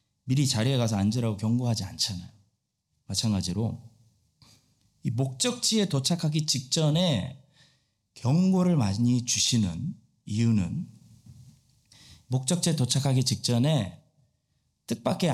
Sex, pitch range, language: male, 115-160 Hz, Korean